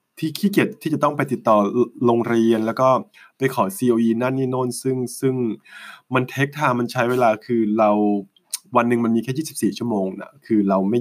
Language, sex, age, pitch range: Thai, male, 20-39, 105-130 Hz